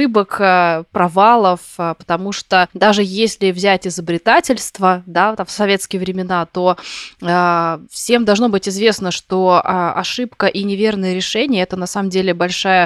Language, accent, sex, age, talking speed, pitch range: Russian, native, female, 20-39, 125 wpm, 180-205 Hz